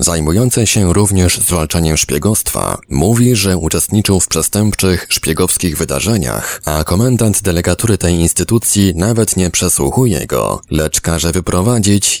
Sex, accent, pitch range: male, native, 80-100 Hz